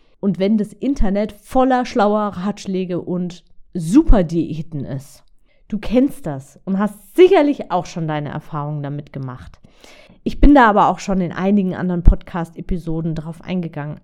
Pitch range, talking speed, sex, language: 160-230 Hz, 145 wpm, female, German